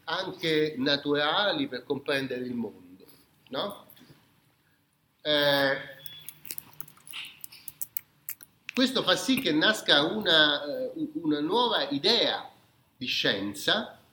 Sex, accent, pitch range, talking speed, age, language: male, native, 140-225 Hz, 75 wpm, 40-59, Italian